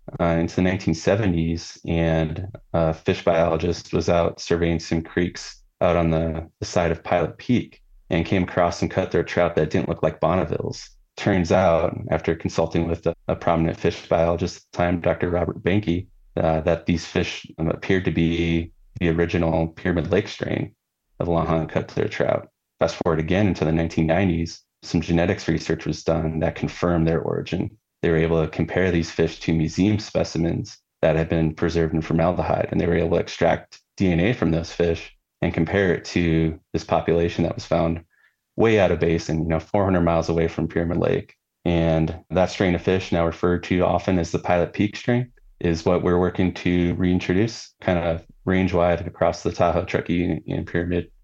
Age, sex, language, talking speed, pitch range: 20-39, male, English, 185 wpm, 80-90 Hz